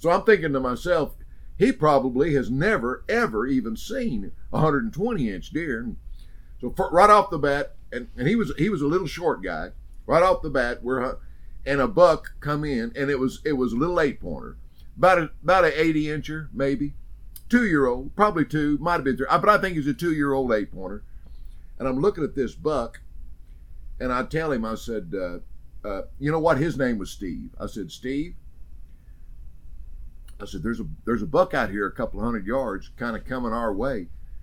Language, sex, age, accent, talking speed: English, male, 50-69, American, 205 wpm